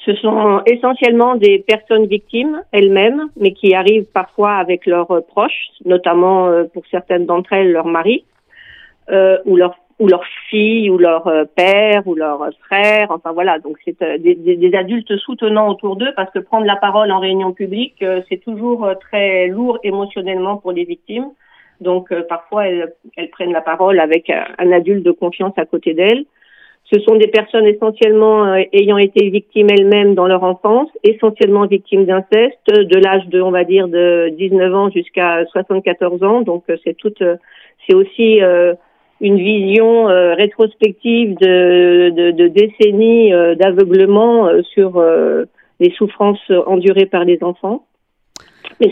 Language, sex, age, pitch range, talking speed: Italian, female, 50-69, 180-215 Hz, 160 wpm